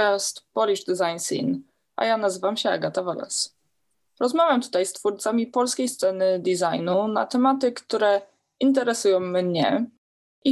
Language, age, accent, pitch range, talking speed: Polish, 20-39, native, 195-265 Hz, 125 wpm